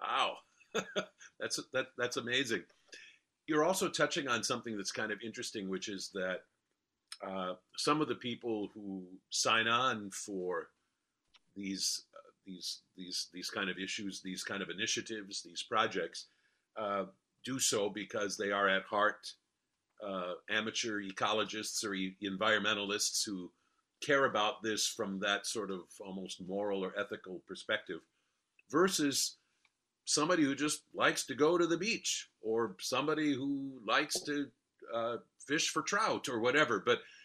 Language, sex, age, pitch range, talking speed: English, male, 50-69, 100-135 Hz, 145 wpm